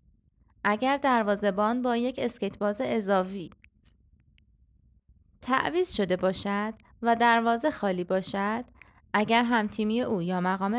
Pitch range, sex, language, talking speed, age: 195-270 Hz, female, Persian, 105 wpm, 20-39